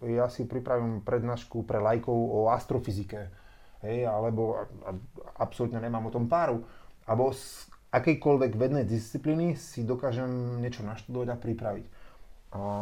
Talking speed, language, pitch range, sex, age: 130 wpm, Slovak, 110-130 Hz, male, 30-49